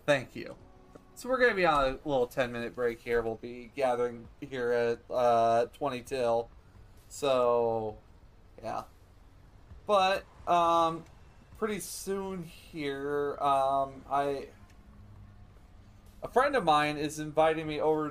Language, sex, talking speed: English, male, 125 wpm